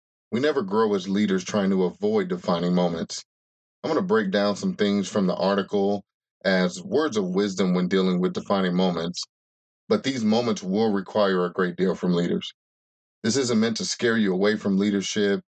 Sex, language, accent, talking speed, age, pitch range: male, English, American, 185 wpm, 30-49, 90-115 Hz